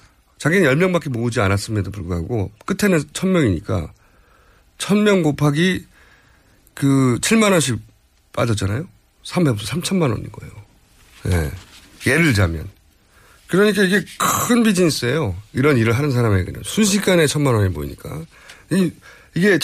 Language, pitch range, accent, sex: Korean, 100-160 Hz, native, male